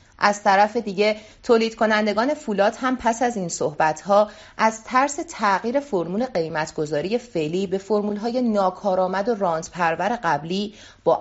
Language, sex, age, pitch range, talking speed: Persian, female, 30-49, 175-230 Hz, 140 wpm